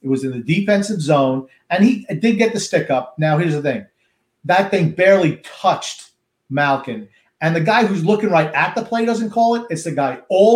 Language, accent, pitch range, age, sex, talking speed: English, American, 160-230 Hz, 40-59, male, 215 wpm